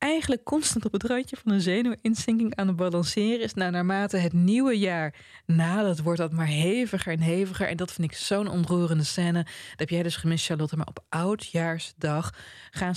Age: 20-39